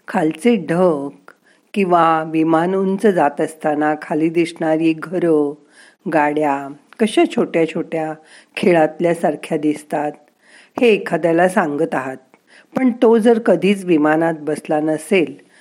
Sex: female